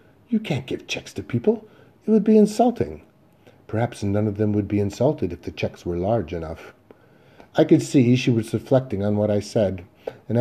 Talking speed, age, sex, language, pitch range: 195 wpm, 40-59, male, English, 105-135 Hz